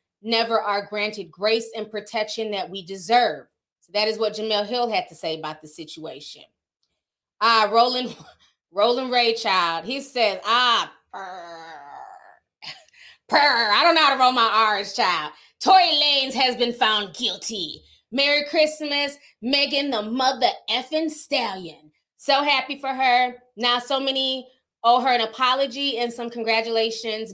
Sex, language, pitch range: female, English, 195-250 Hz